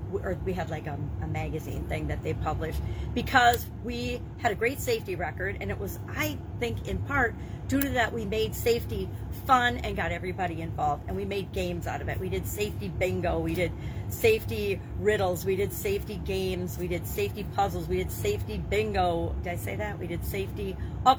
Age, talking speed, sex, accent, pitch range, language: 40-59, 200 wpm, female, American, 90-115 Hz, English